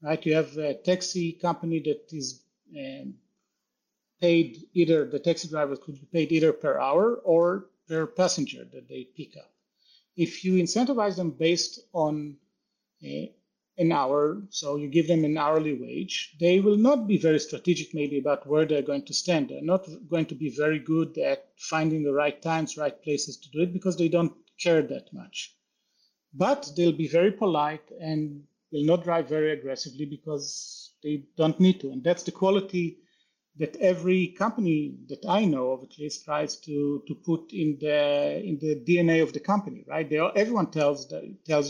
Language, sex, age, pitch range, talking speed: English, male, 40-59, 150-180 Hz, 180 wpm